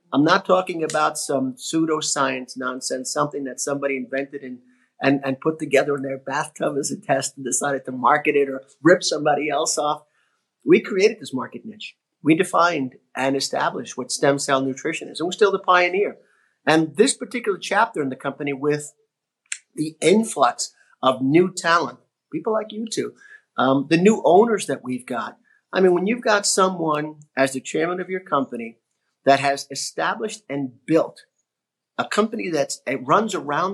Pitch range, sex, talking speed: 140-210 Hz, male, 175 wpm